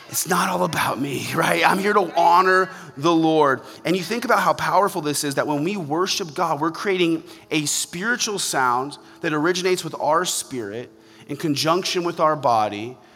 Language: English